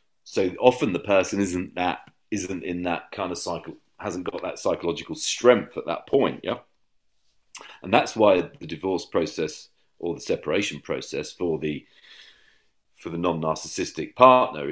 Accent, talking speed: British, 155 wpm